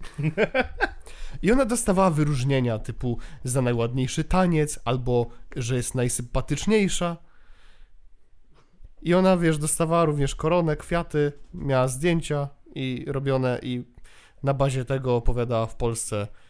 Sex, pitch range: male, 120-150 Hz